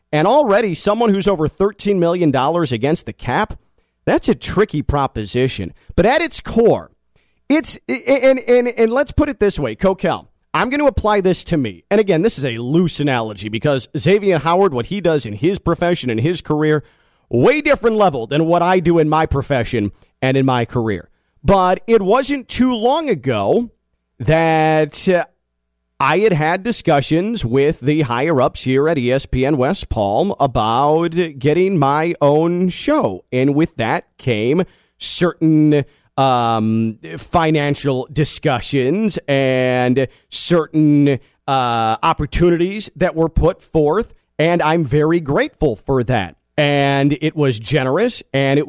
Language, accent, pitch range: English, American, 130-185 Hz